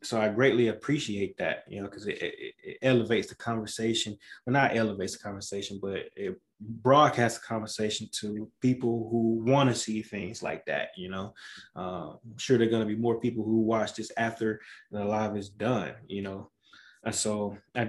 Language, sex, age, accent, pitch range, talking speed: English, male, 20-39, American, 110-145 Hz, 200 wpm